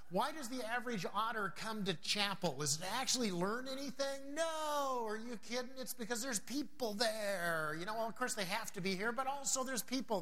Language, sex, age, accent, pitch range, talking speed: English, male, 50-69, American, 190-240 Hz, 210 wpm